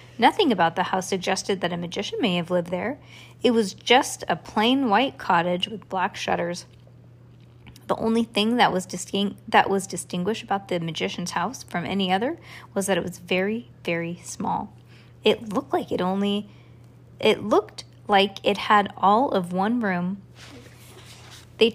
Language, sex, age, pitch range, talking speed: English, female, 20-39, 175-225 Hz, 165 wpm